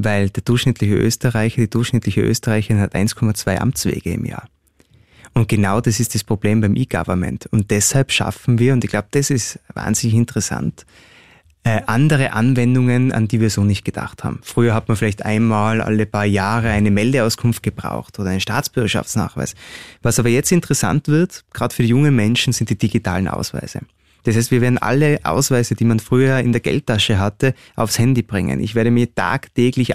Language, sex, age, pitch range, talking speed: German, male, 20-39, 105-125 Hz, 180 wpm